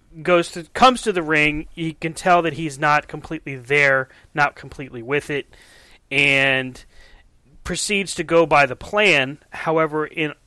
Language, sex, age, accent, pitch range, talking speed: English, male, 30-49, American, 120-150 Hz, 155 wpm